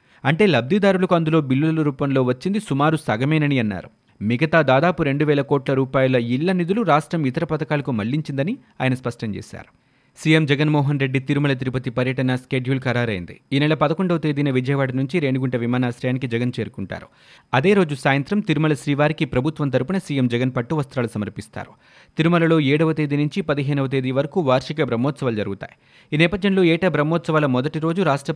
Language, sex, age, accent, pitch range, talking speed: Telugu, male, 30-49, native, 130-155 Hz, 150 wpm